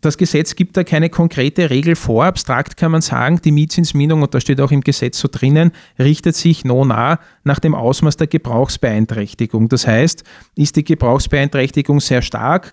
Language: German